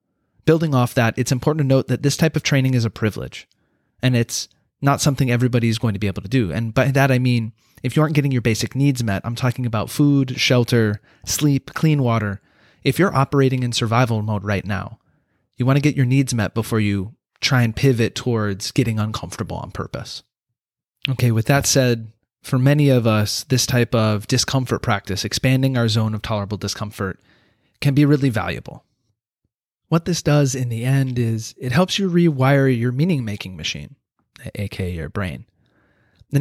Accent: American